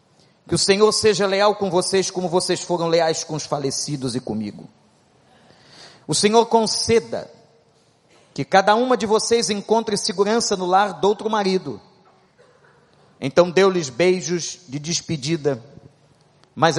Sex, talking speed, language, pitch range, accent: male, 130 wpm, Portuguese, 155-205 Hz, Brazilian